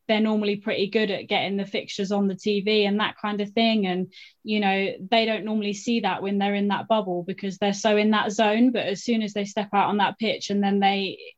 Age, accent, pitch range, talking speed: 20-39, British, 195-235 Hz, 255 wpm